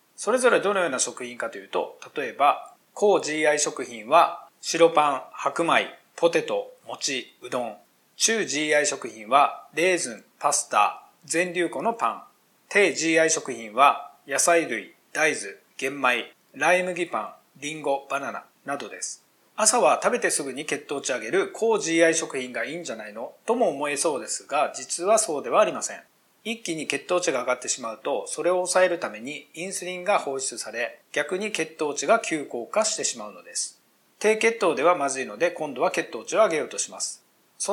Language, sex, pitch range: Japanese, male, 155-225 Hz